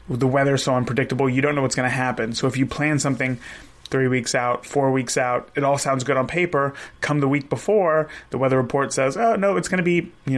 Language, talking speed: English, 250 wpm